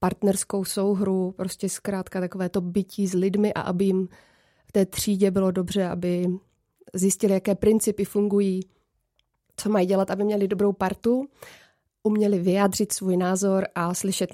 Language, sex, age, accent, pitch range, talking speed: Czech, female, 30-49, native, 190-210 Hz, 145 wpm